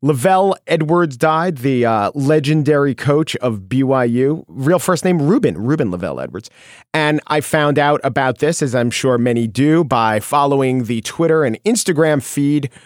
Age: 40-59